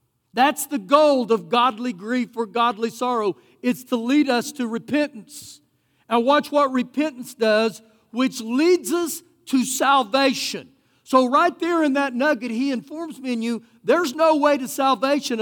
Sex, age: male, 50-69